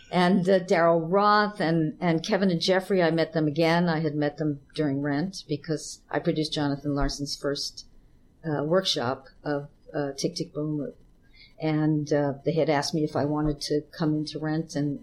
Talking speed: 185 wpm